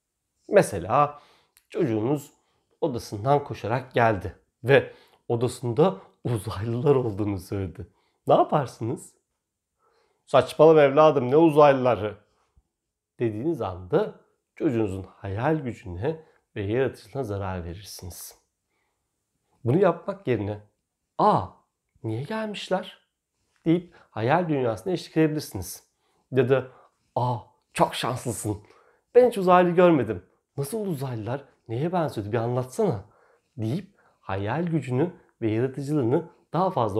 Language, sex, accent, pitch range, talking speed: Turkish, male, native, 110-160 Hz, 95 wpm